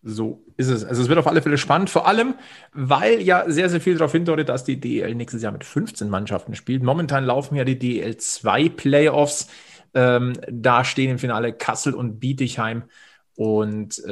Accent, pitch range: German, 115-150 Hz